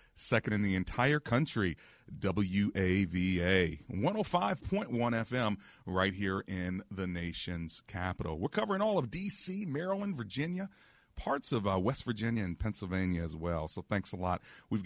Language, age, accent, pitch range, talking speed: English, 40-59, American, 95-125 Hz, 140 wpm